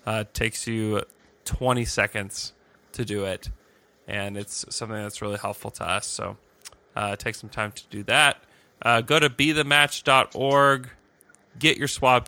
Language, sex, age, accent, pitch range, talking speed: English, male, 20-39, American, 105-125 Hz, 155 wpm